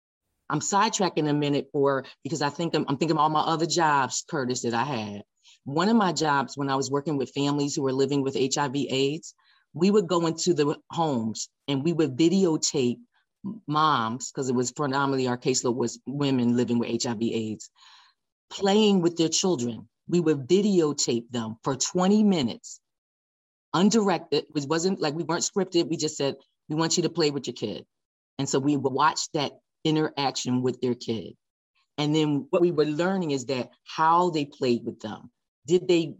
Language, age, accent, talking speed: English, 40-59, American, 185 wpm